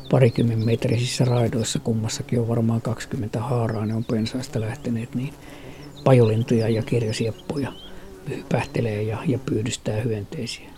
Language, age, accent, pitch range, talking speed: Finnish, 50-69, native, 110-135 Hz, 115 wpm